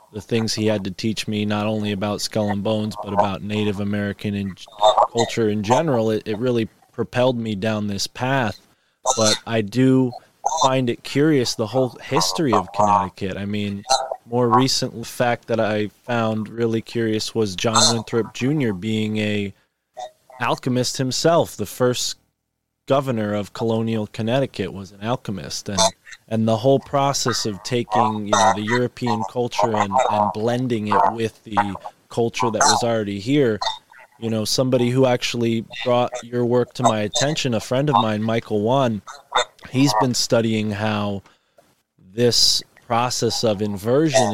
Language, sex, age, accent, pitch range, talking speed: English, male, 20-39, American, 105-125 Hz, 155 wpm